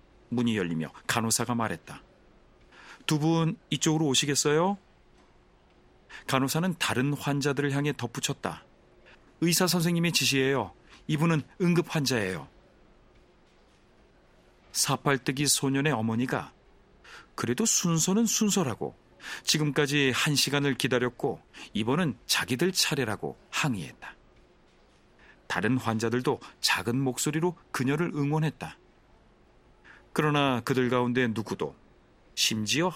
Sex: male